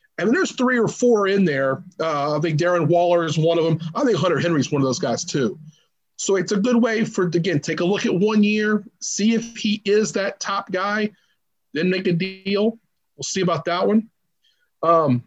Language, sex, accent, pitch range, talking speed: English, male, American, 150-205 Hz, 225 wpm